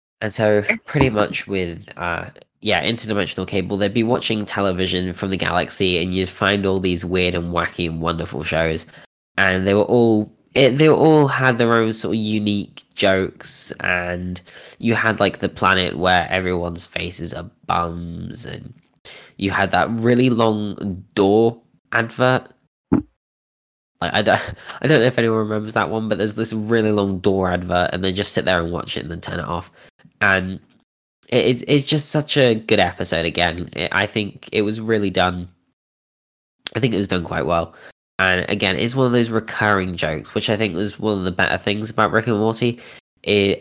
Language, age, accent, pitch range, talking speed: English, 10-29, British, 90-110 Hz, 180 wpm